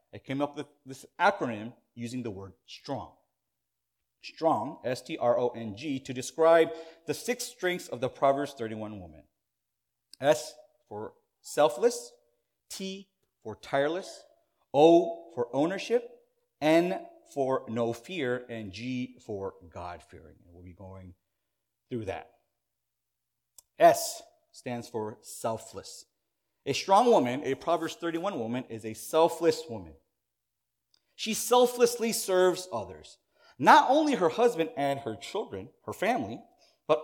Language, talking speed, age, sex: English, 120 wpm, 30-49, male